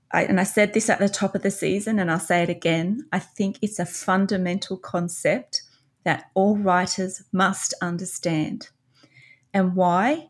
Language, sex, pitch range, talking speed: English, female, 175-220 Hz, 165 wpm